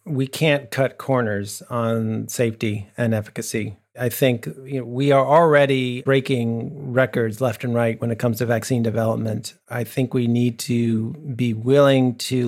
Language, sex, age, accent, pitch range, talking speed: English, male, 40-59, American, 120-145 Hz, 165 wpm